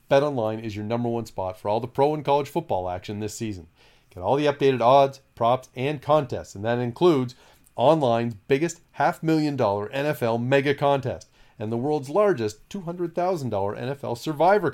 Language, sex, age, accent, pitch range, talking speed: English, male, 40-59, American, 110-155 Hz, 165 wpm